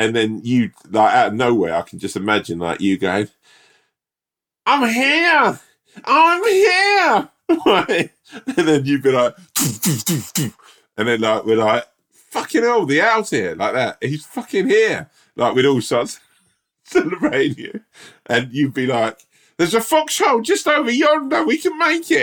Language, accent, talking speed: English, British, 155 wpm